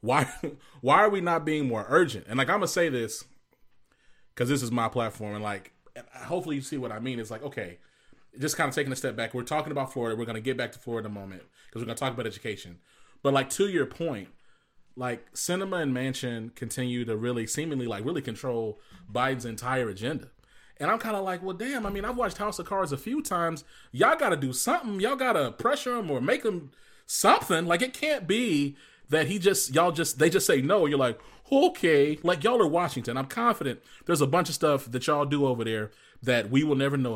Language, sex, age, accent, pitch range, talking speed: English, male, 30-49, American, 120-170 Hz, 235 wpm